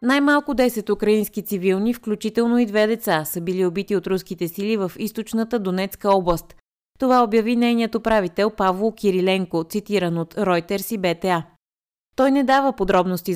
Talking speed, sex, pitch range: 150 wpm, female, 180-225 Hz